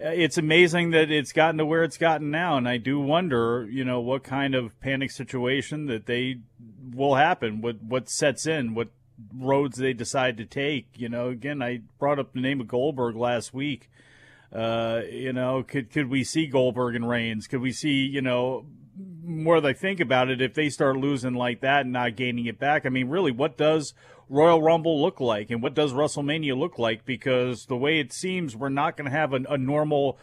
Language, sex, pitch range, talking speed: English, male, 125-150 Hz, 210 wpm